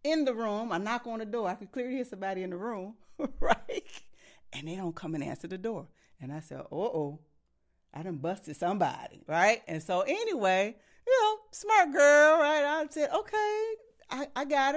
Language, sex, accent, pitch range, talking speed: English, female, American, 160-245 Hz, 205 wpm